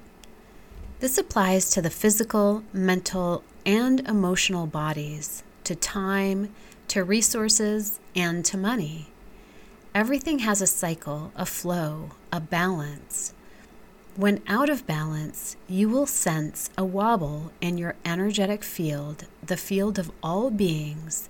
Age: 40-59